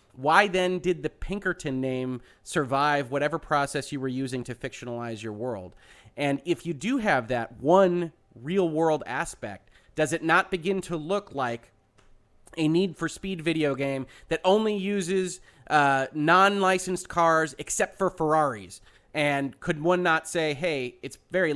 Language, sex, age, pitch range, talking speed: English, male, 30-49, 130-170 Hz, 160 wpm